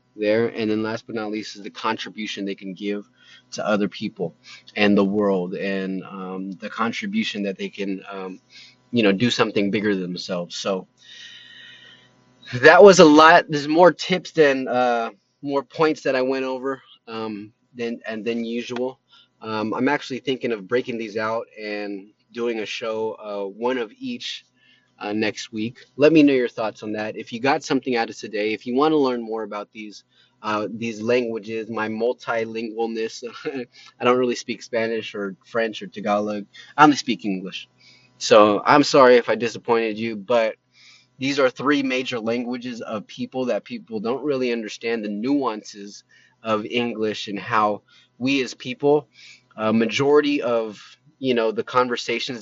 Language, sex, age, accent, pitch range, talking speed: English, male, 20-39, American, 105-130 Hz, 170 wpm